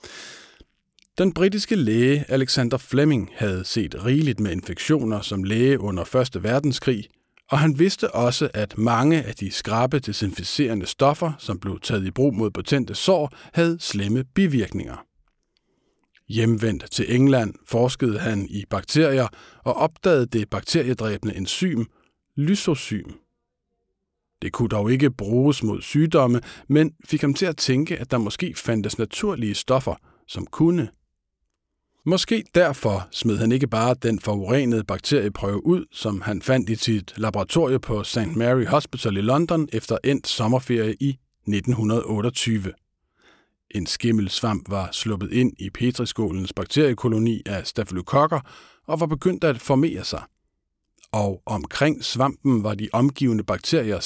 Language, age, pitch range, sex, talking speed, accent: Danish, 50-69, 105-145 Hz, male, 135 wpm, native